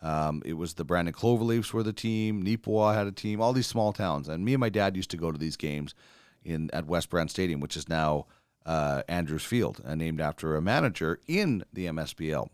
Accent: American